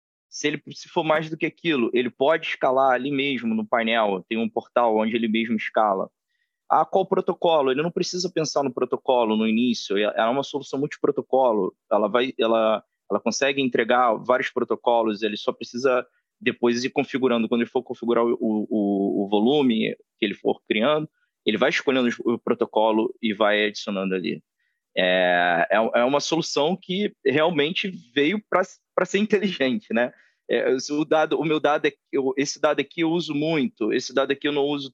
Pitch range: 115-165 Hz